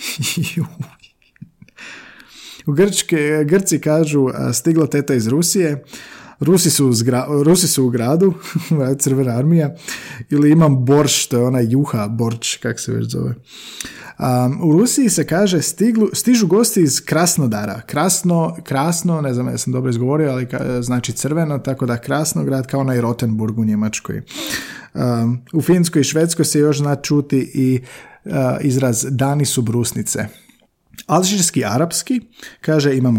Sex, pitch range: male, 125-165 Hz